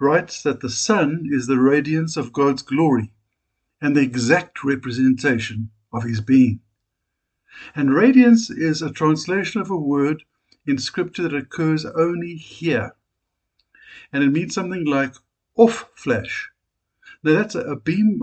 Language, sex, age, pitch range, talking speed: English, male, 60-79, 125-165 Hz, 135 wpm